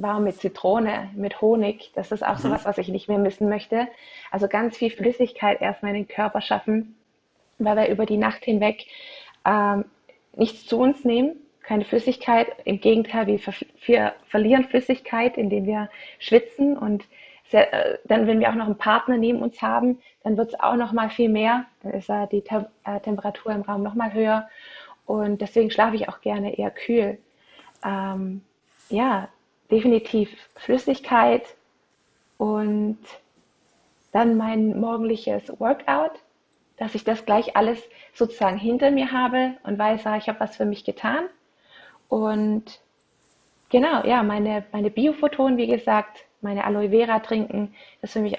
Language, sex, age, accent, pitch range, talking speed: German, female, 20-39, German, 210-240 Hz, 160 wpm